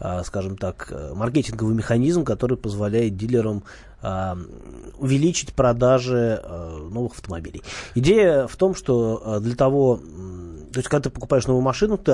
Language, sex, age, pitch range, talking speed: Russian, male, 20-39, 100-135 Hz, 125 wpm